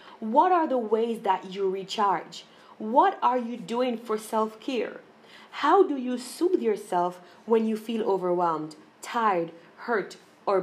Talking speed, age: 140 wpm, 30-49